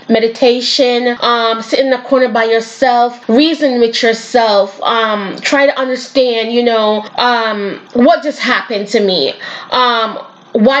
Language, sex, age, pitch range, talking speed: English, female, 20-39, 225-265 Hz, 140 wpm